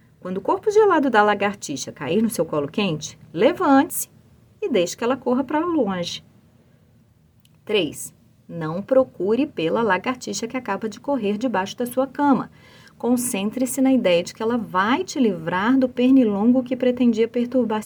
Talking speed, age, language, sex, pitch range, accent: 155 wpm, 30-49, Portuguese, female, 165-260 Hz, Brazilian